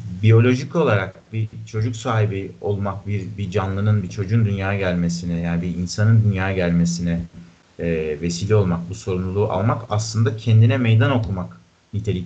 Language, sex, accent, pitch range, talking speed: Turkish, male, native, 95-115 Hz, 140 wpm